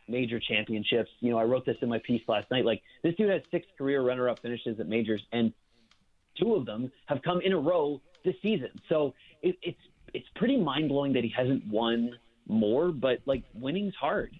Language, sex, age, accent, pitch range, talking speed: English, male, 30-49, American, 115-135 Hz, 195 wpm